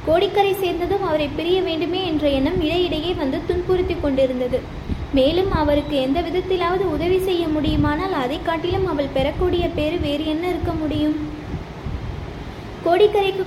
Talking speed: 125 wpm